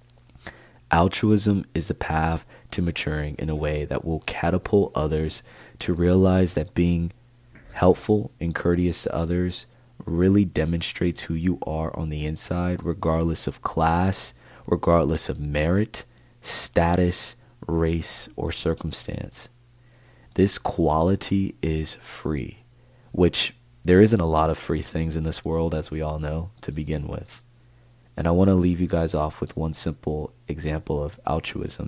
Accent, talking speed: American, 145 wpm